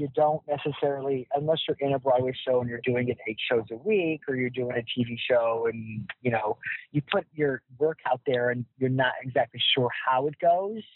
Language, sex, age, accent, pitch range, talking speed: English, male, 40-59, American, 120-150 Hz, 220 wpm